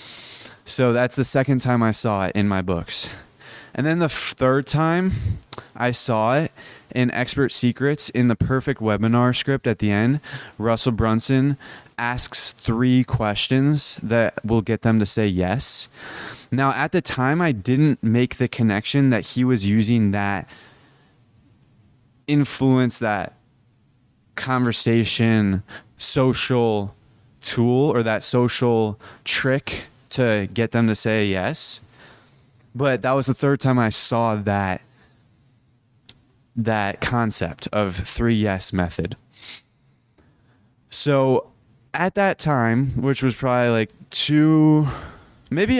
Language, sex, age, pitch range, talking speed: English, male, 20-39, 110-130 Hz, 125 wpm